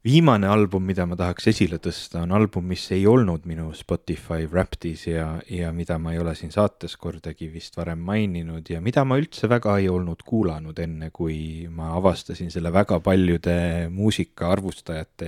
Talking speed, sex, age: 175 wpm, male, 30-49